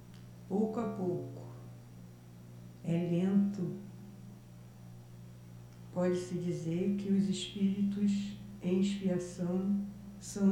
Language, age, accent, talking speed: Portuguese, 60-79, Brazilian, 75 wpm